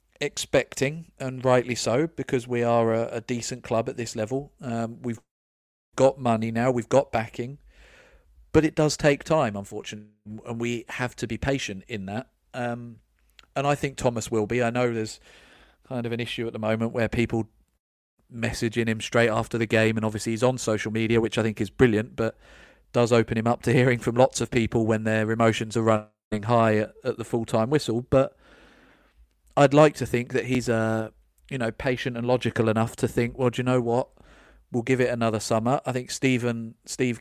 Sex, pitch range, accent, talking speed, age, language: male, 115-130 Hz, British, 200 wpm, 40-59, English